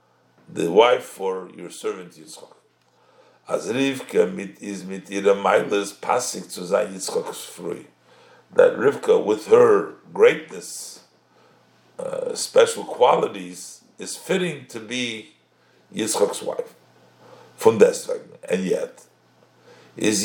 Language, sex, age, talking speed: English, male, 60-79, 100 wpm